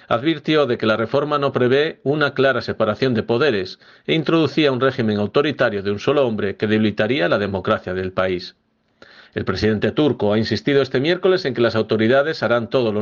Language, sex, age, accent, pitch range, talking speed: Spanish, male, 40-59, Spanish, 105-135 Hz, 190 wpm